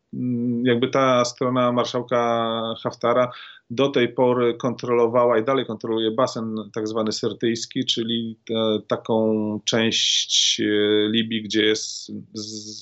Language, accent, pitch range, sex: Polish, native, 110-130 Hz, male